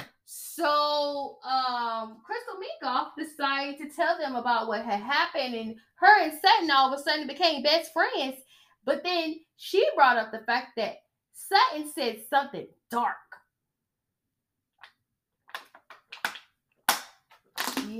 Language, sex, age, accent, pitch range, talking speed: English, female, 10-29, American, 245-355 Hz, 120 wpm